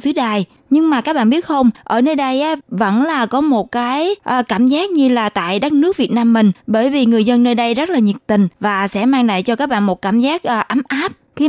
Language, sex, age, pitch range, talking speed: Vietnamese, female, 20-39, 210-270 Hz, 255 wpm